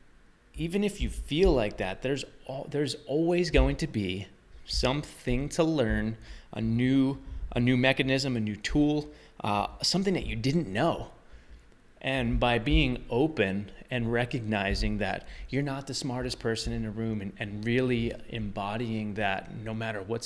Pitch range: 105-135 Hz